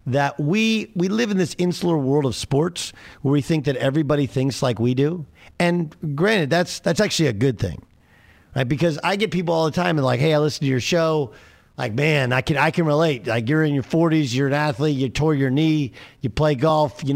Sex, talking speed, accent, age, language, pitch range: male, 230 wpm, American, 50-69, English, 125-170 Hz